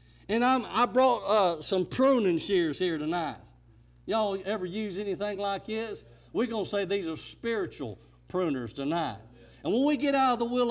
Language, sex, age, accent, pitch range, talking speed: English, male, 50-69, American, 205-255 Hz, 180 wpm